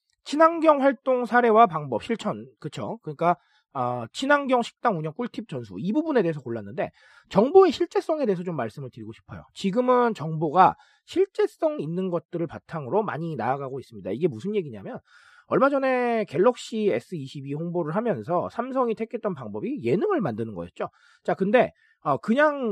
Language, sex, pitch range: Korean, male, 160-260 Hz